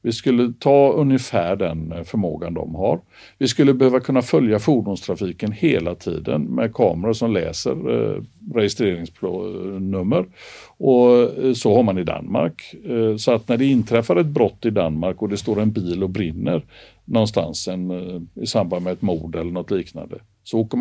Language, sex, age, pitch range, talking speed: Swedish, male, 60-79, 90-125 Hz, 155 wpm